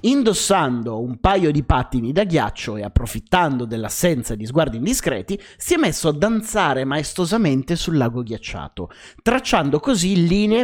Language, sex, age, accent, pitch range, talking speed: Italian, male, 30-49, native, 130-180 Hz, 140 wpm